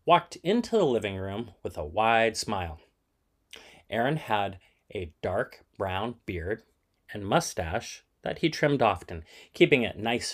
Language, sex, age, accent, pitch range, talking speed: English, male, 30-49, American, 90-145 Hz, 140 wpm